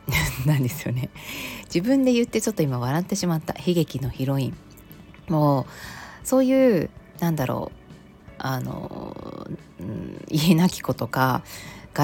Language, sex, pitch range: Japanese, female, 140-205 Hz